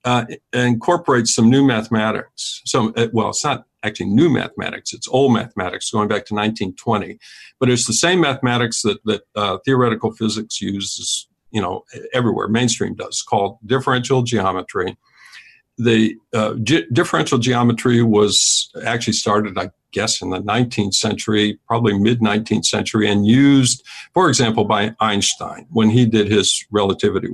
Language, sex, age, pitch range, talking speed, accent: English, male, 50-69, 105-125 Hz, 145 wpm, American